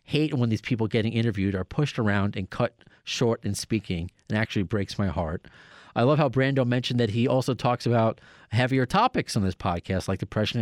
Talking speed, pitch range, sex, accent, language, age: 205 wpm, 110-135 Hz, male, American, English, 40-59